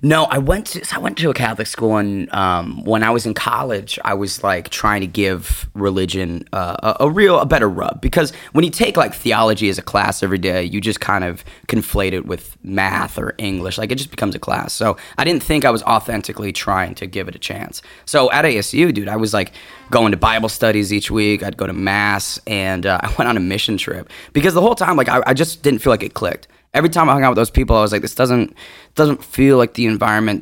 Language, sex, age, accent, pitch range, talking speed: English, male, 20-39, American, 100-140 Hz, 250 wpm